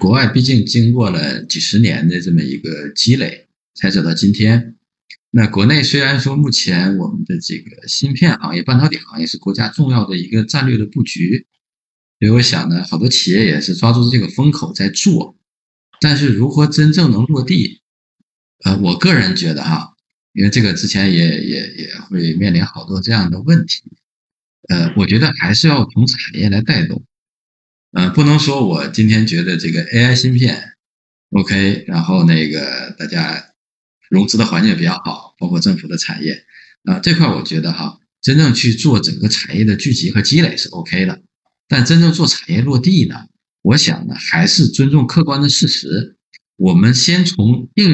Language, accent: Chinese, native